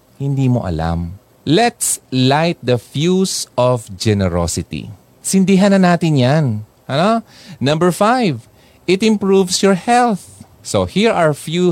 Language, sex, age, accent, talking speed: Filipino, male, 30-49, native, 130 wpm